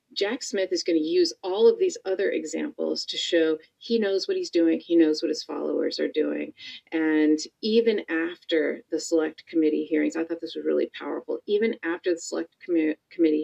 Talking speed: 190 wpm